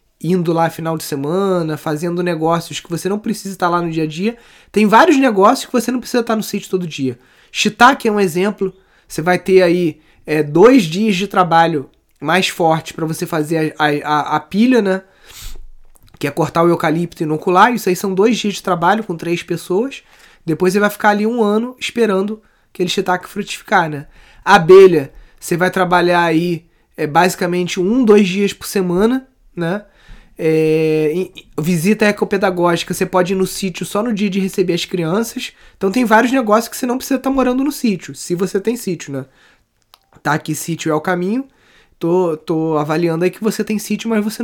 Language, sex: Portuguese, male